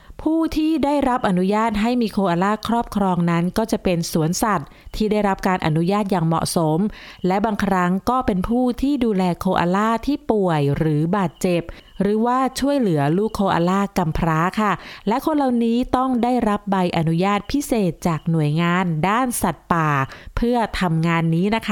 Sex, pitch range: female, 175-230 Hz